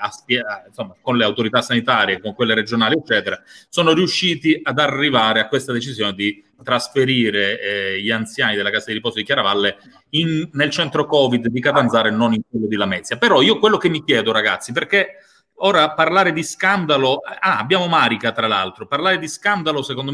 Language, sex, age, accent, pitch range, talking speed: Italian, male, 30-49, native, 130-190 Hz, 180 wpm